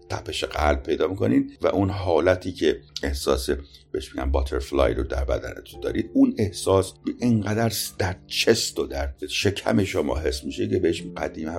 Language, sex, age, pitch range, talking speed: Persian, male, 50-69, 75-110 Hz, 160 wpm